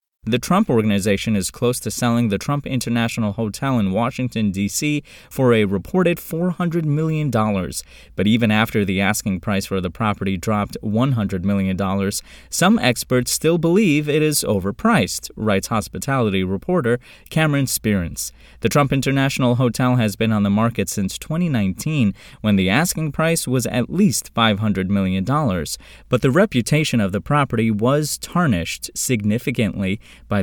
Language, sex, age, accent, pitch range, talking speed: English, male, 20-39, American, 100-130 Hz, 145 wpm